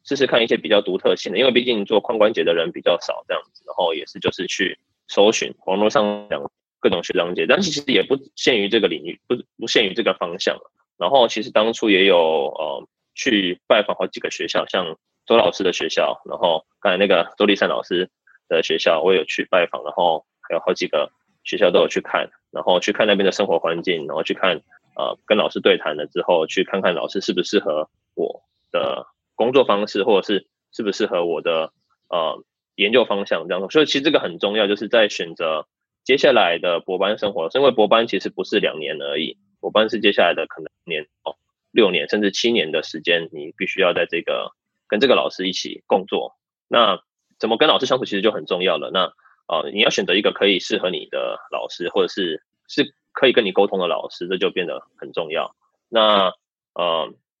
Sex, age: male, 20-39